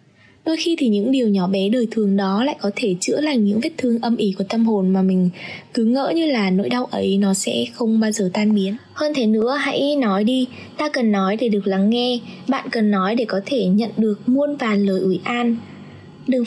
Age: 10-29